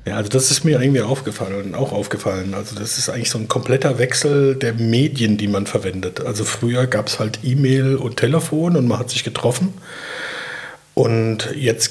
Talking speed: 185 wpm